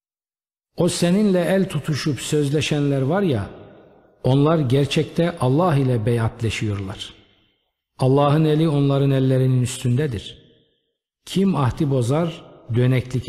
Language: Turkish